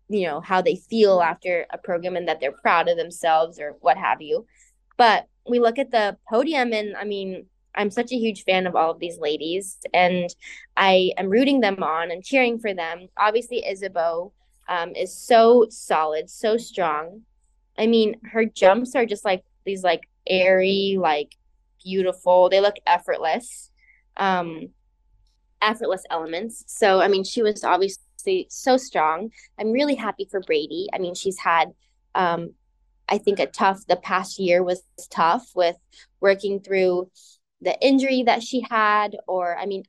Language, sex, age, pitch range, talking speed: English, female, 20-39, 175-220 Hz, 170 wpm